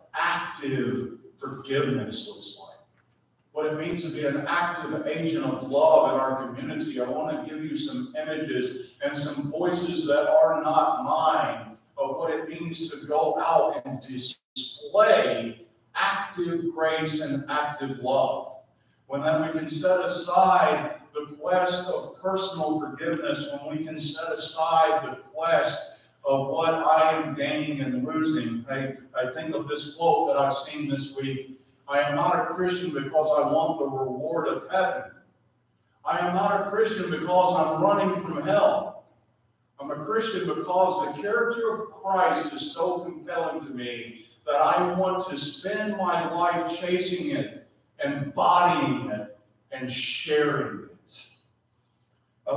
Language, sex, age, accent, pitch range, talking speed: English, male, 40-59, American, 140-180 Hz, 150 wpm